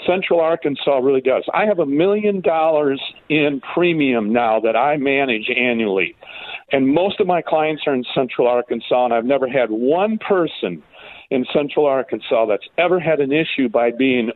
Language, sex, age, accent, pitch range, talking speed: English, male, 50-69, American, 130-180 Hz, 170 wpm